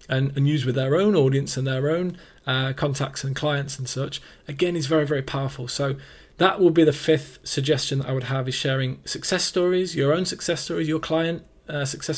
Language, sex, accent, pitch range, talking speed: English, male, British, 135-165 Hz, 215 wpm